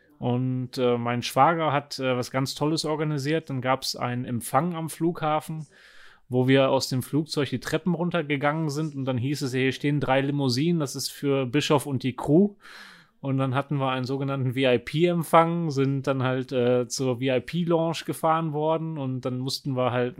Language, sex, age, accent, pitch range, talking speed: German, male, 30-49, German, 130-155 Hz, 180 wpm